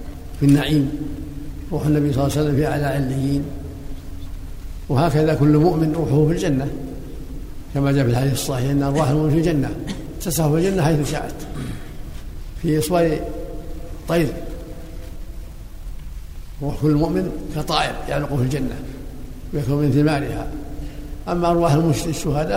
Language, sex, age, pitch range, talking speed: Arabic, male, 60-79, 140-160 Hz, 130 wpm